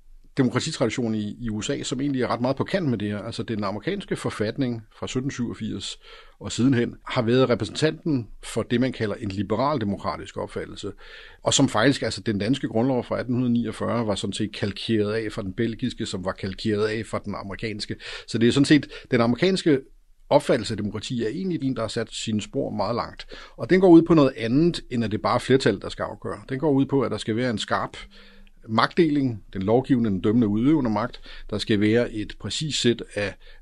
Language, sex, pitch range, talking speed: Danish, male, 105-130 Hz, 205 wpm